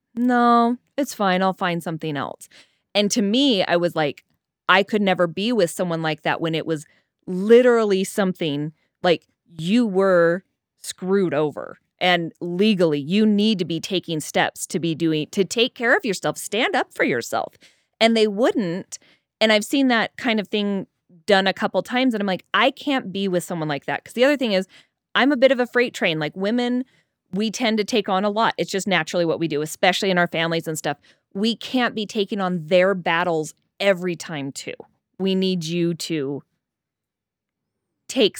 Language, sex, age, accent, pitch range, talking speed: English, female, 20-39, American, 170-220 Hz, 195 wpm